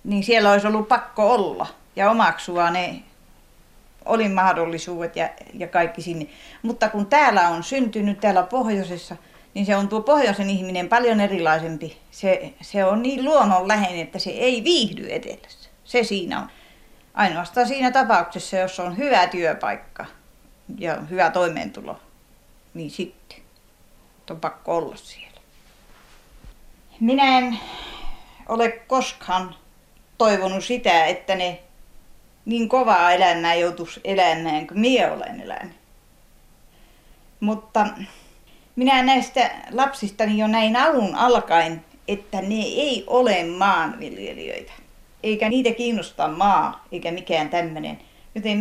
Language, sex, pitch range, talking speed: Finnish, female, 175-235 Hz, 120 wpm